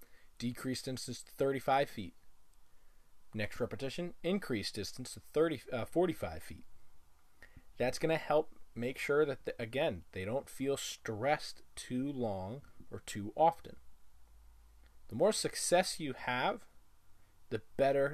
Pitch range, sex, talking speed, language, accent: 100-140 Hz, male, 130 wpm, English, American